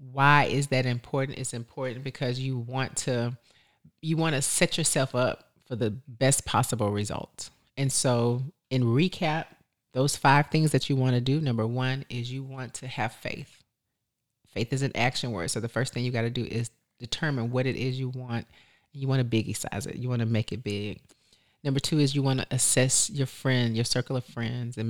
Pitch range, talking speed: 115-130 Hz, 210 wpm